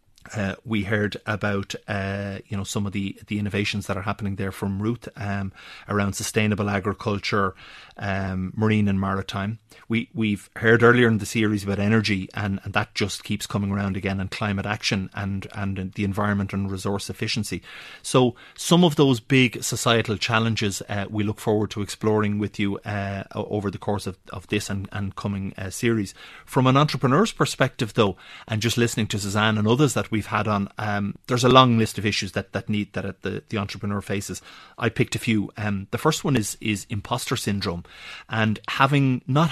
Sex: male